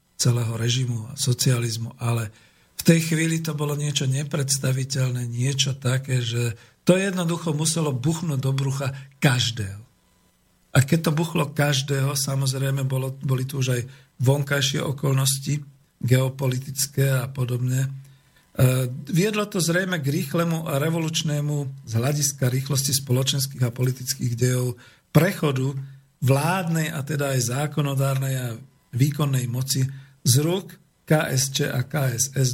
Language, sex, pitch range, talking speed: Slovak, male, 125-150 Hz, 120 wpm